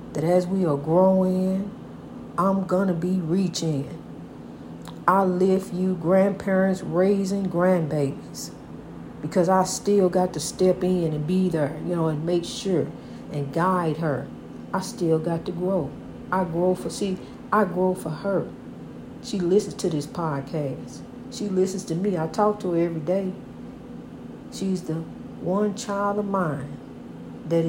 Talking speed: 150 wpm